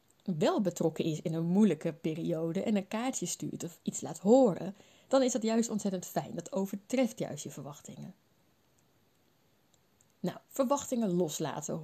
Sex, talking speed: female, 145 wpm